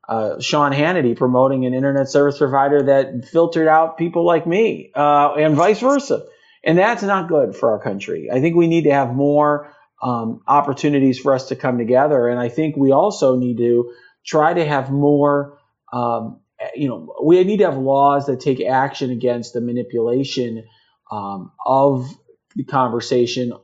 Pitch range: 125-155 Hz